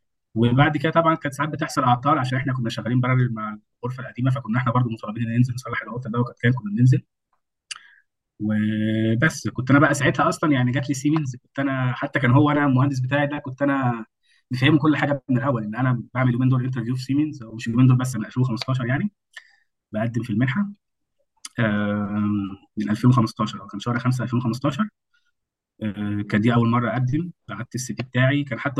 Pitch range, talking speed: 115-140 Hz, 180 wpm